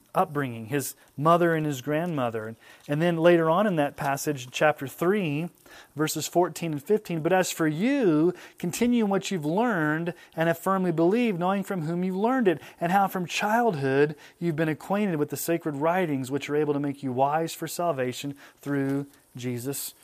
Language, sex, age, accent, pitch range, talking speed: English, male, 30-49, American, 140-180 Hz, 185 wpm